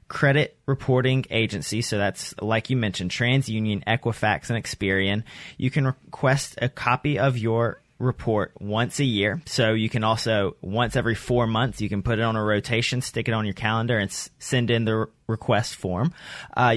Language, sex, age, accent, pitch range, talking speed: English, male, 30-49, American, 105-130 Hz, 180 wpm